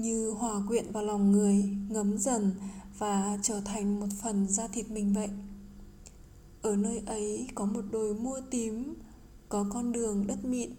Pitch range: 205-240 Hz